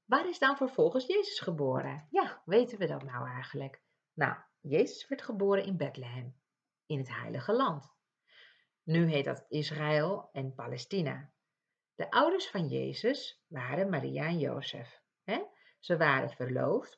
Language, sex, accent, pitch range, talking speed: Dutch, female, Dutch, 140-200 Hz, 140 wpm